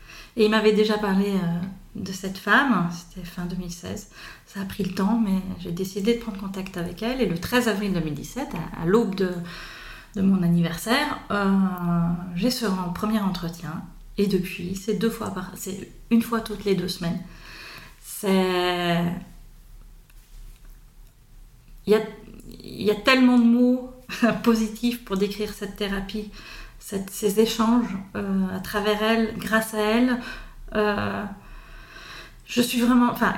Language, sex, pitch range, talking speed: French, female, 180-230 Hz, 145 wpm